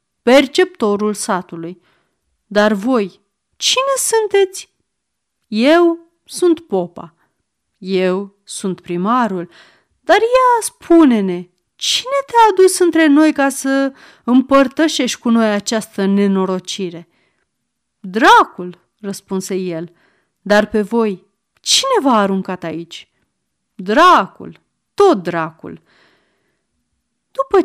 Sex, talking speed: female, 90 wpm